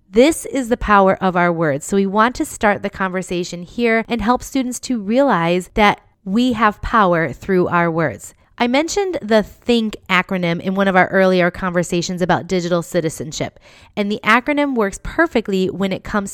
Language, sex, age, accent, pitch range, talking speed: English, female, 20-39, American, 180-240 Hz, 180 wpm